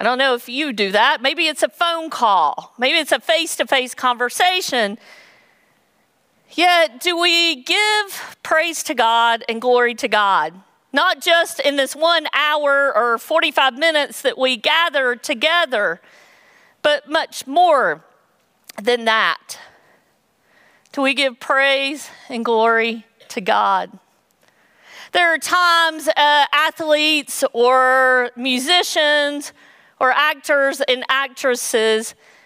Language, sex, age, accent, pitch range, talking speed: English, female, 50-69, American, 245-315 Hz, 120 wpm